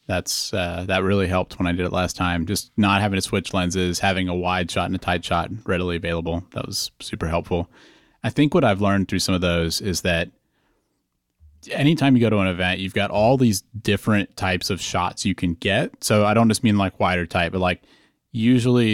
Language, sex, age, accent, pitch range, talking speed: English, male, 30-49, American, 90-110 Hz, 220 wpm